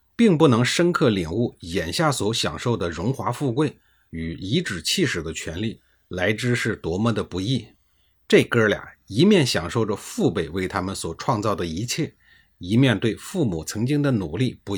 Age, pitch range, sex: 50-69, 95-140 Hz, male